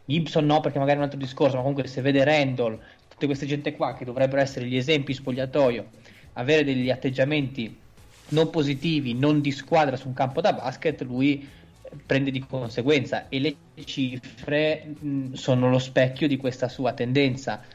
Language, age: Italian, 20-39